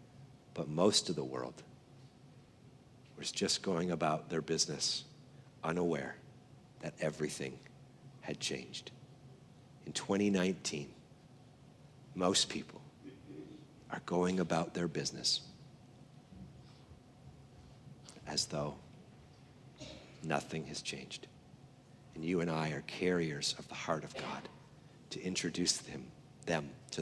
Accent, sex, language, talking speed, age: American, male, English, 100 wpm, 50-69